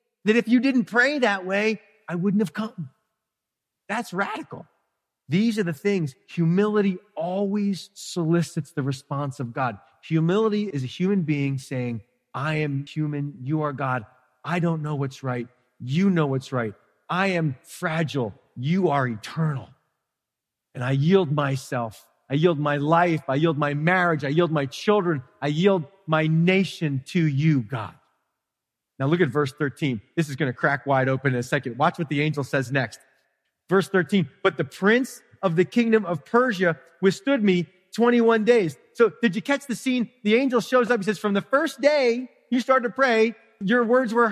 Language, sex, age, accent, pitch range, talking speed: English, male, 30-49, American, 150-225 Hz, 175 wpm